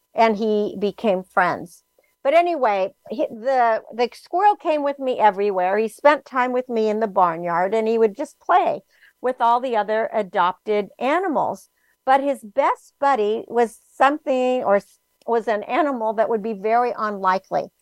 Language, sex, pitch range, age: English, female, 210-275 Hz, 60-79